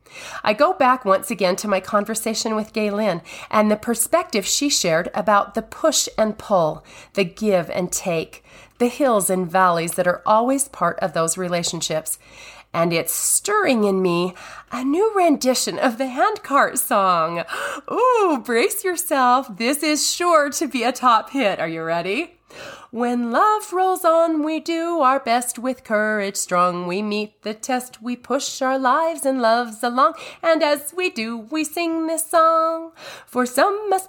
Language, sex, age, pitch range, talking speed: English, female, 30-49, 210-325 Hz, 165 wpm